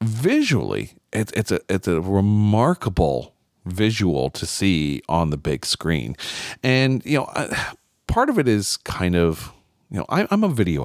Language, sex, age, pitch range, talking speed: English, male, 40-59, 80-115 Hz, 160 wpm